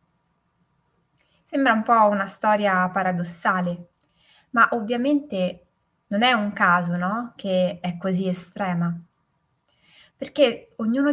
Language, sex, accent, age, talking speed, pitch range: Italian, female, native, 20-39, 95 wpm, 175-215 Hz